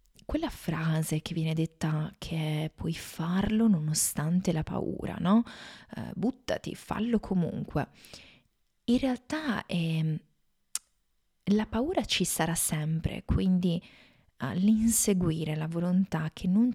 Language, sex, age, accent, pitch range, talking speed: Italian, female, 20-39, native, 160-200 Hz, 110 wpm